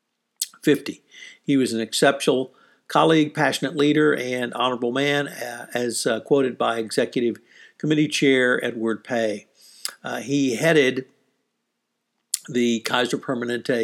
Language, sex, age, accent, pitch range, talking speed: English, male, 60-79, American, 115-140 Hz, 115 wpm